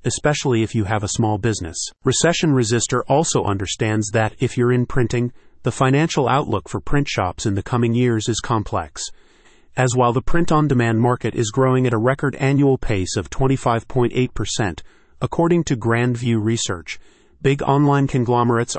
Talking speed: 160 wpm